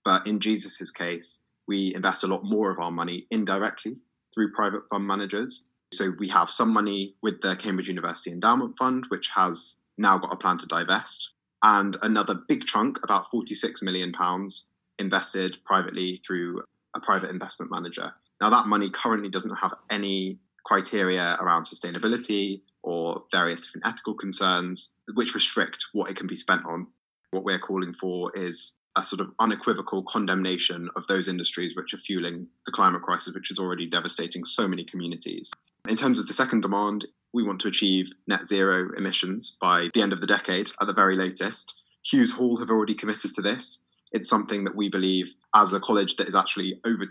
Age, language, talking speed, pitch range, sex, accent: 20-39, English, 180 wpm, 90-100 Hz, male, British